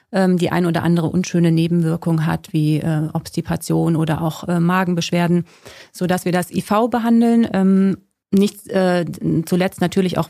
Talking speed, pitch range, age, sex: 120 wpm, 165-185 Hz, 30-49, female